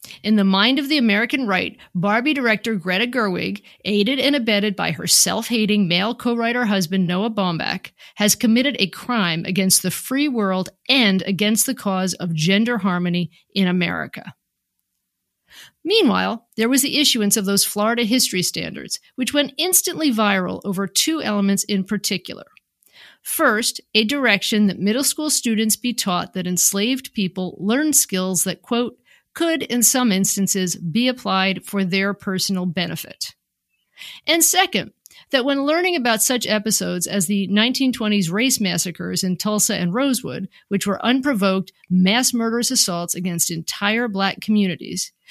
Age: 50-69